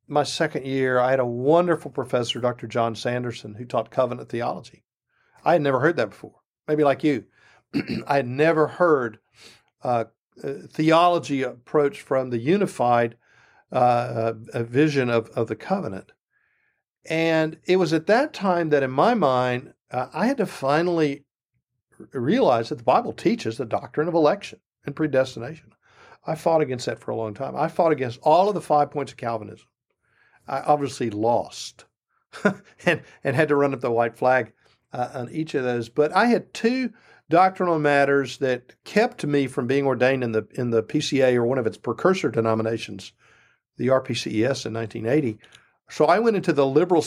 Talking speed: 175 wpm